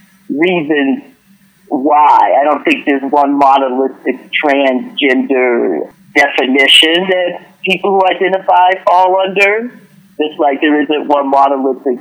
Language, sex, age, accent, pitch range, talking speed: English, male, 50-69, American, 150-195 Hz, 110 wpm